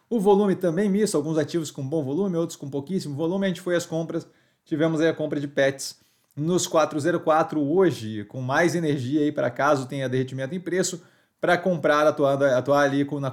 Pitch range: 140-170 Hz